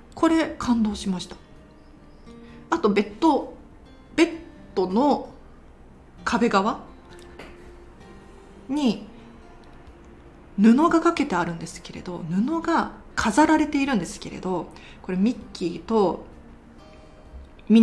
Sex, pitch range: female, 180-255 Hz